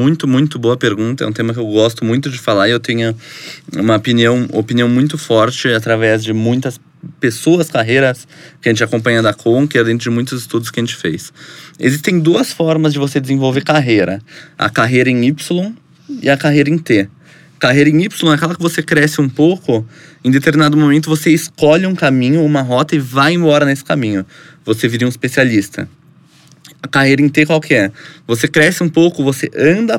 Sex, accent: male, Brazilian